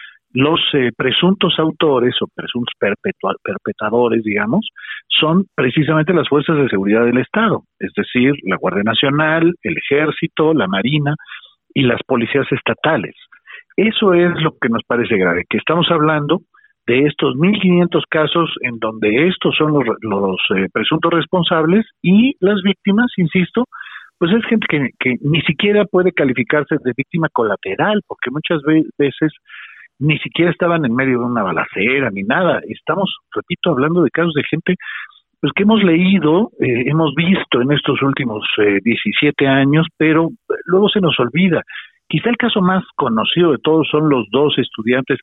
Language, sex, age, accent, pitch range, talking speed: Spanish, male, 50-69, Mexican, 130-180 Hz, 155 wpm